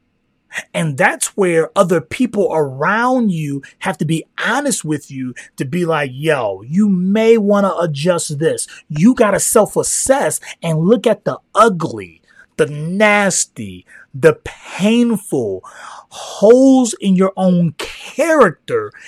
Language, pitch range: English, 155-220 Hz